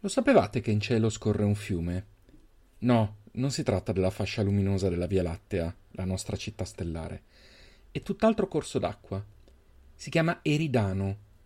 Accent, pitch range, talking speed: native, 95-130 Hz, 150 wpm